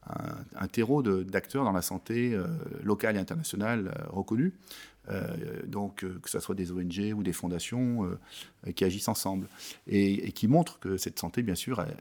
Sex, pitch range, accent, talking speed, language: male, 95-120 Hz, French, 190 wpm, French